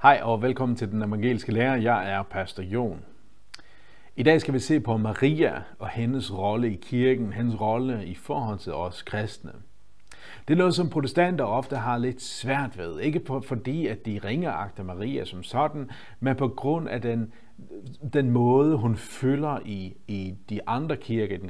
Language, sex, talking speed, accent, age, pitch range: Danish, male, 180 wpm, native, 50-69, 105-145 Hz